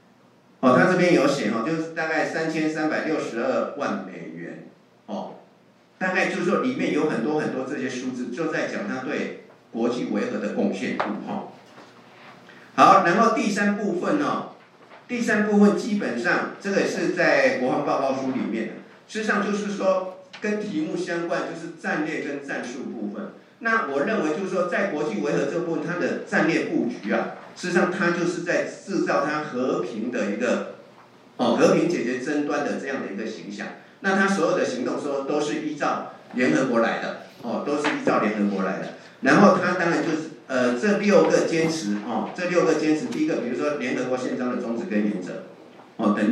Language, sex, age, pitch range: Chinese, male, 50-69, 150-200 Hz